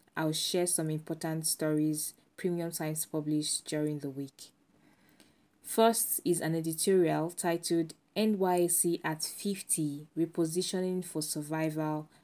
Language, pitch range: English, 155-180 Hz